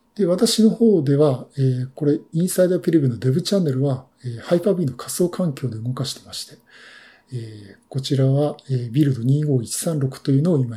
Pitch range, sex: 130-170 Hz, male